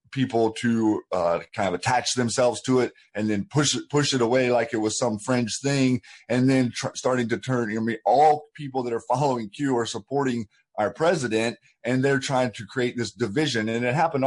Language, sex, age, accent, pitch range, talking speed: English, male, 30-49, American, 110-130 Hz, 220 wpm